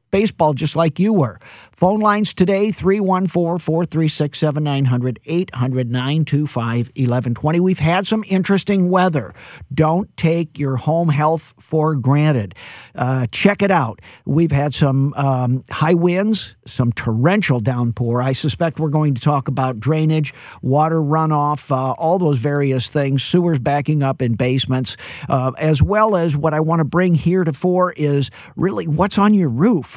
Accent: American